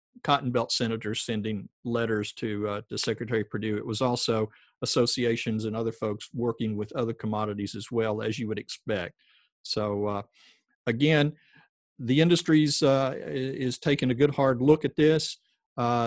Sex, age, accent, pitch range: male, 50-69, American, 110-145 Hz